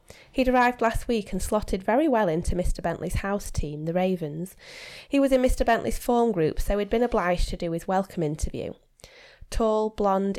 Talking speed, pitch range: 190 wpm, 170-225 Hz